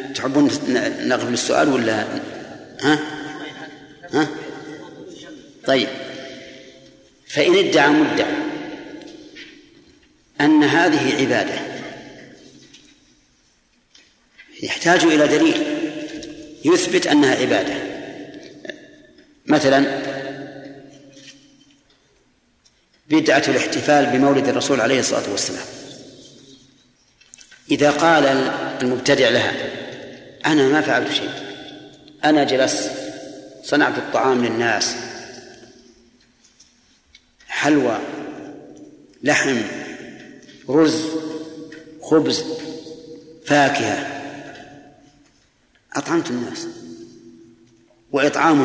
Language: Arabic